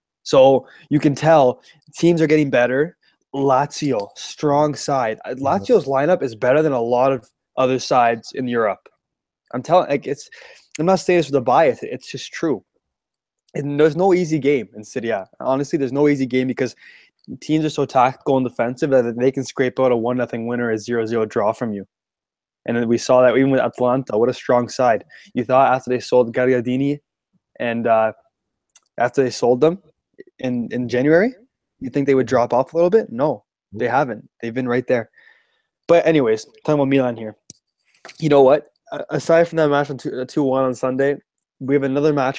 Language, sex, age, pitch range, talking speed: English, male, 20-39, 120-150 Hz, 195 wpm